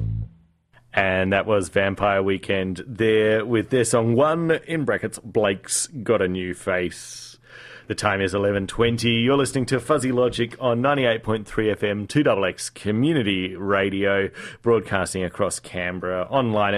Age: 30-49